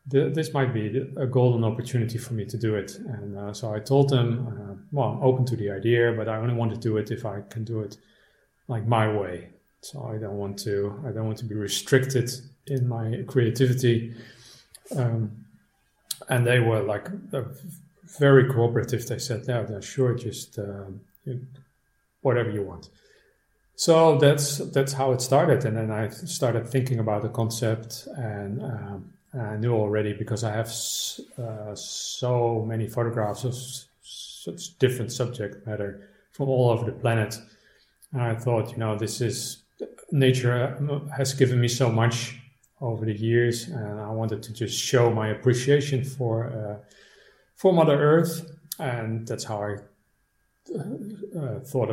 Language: English